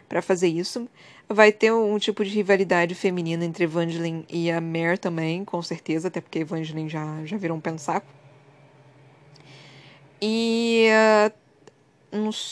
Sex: female